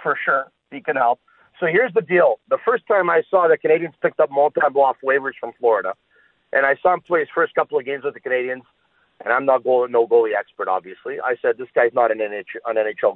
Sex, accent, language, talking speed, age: male, American, English, 235 wpm, 50-69